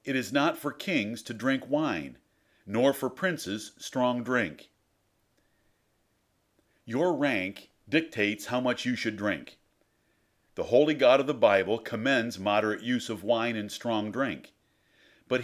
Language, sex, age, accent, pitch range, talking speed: English, male, 50-69, American, 120-150 Hz, 140 wpm